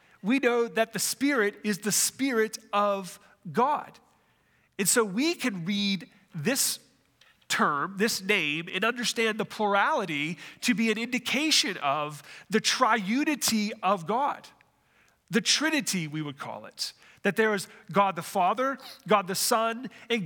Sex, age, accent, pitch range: male, 40-59, American, 195-240 Hz